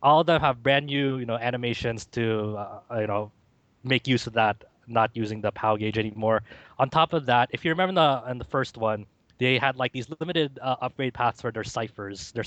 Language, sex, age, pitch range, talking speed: English, male, 20-39, 105-130 Hz, 230 wpm